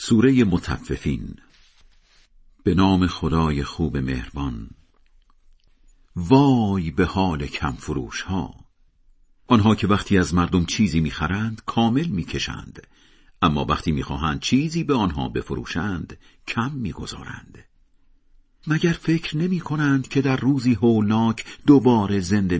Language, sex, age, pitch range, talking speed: Persian, male, 50-69, 80-115 Hz, 110 wpm